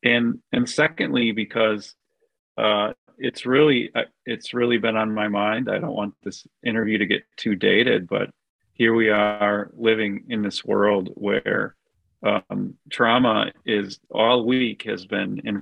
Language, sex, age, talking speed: English, male, 40-59, 150 wpm